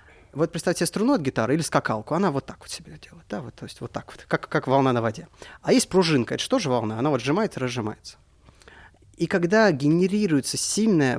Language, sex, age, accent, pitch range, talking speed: Russian, male, 20-39, native, 125-165 Hz, 220 wpm